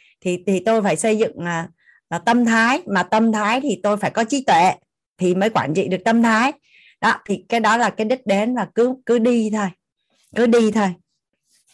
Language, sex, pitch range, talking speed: Vietnamese, female, 195-255 Hz, 215 wpm